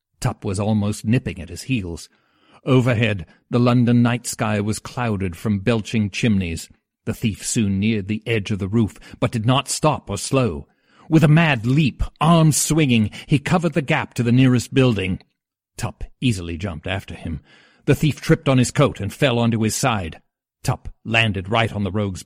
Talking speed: 185 wpm